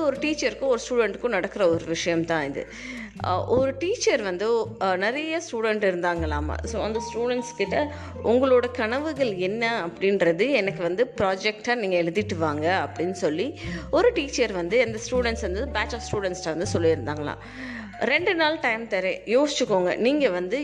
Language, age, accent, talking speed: Tamil, 20-39, native, 50 wpm